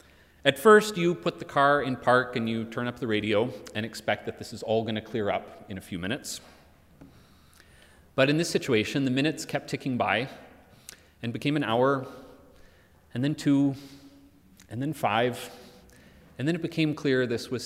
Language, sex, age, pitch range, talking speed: English, male, 30-49, 105-140 Hz, 185 wpm